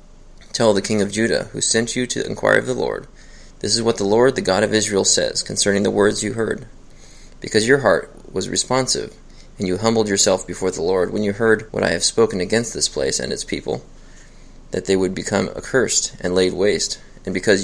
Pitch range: 95-115 Hz